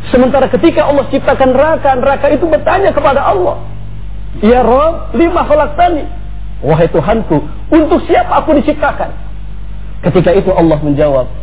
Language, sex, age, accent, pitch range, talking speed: English, male, 40-59, Indonesian, 135-210 Hz, 125 wpm